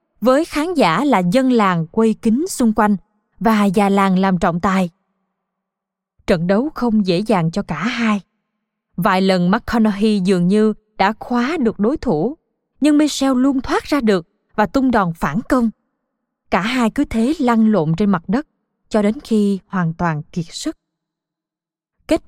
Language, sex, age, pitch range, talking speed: Vietnamese, female, 20-39, 195-240 Hz, 165 wpm